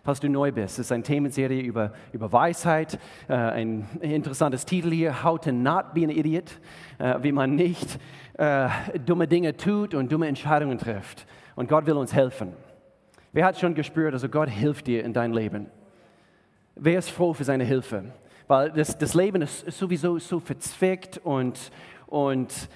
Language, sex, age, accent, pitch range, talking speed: German, male, 40-59, German, 130-170 Hz, 165 wpm